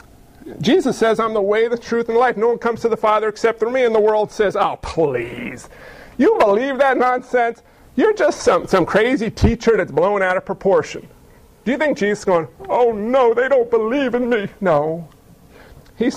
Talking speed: 205 wpm